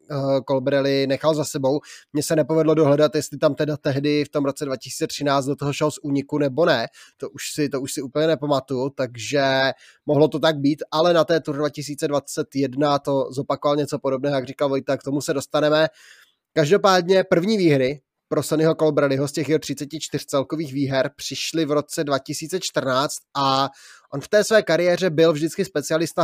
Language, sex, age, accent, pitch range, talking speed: Czech, male, 20-39, native, 140-155 Hz, 175 wpm